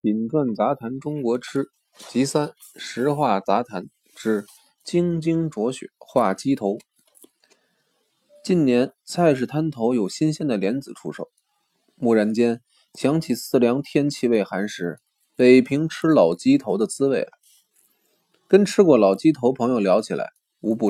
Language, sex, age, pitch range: Chinese, male, 20-39, 120-170 Hz